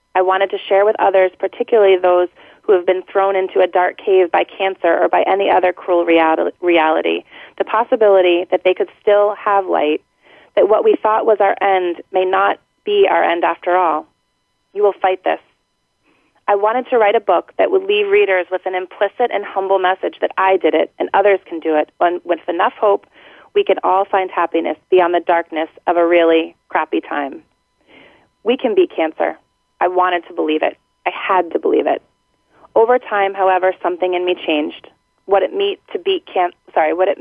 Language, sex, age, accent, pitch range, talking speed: English, female, 30-49, American, 175-205 Hz, 185 wpm